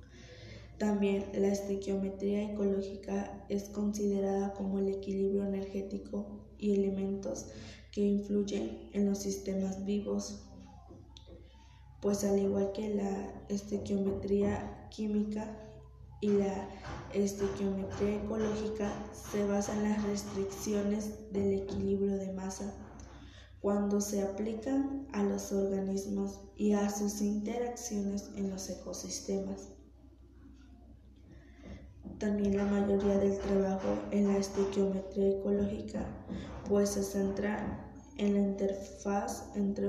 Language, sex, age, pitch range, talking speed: Spanish, female, 20-39, 195-205 Hz, 100 wpm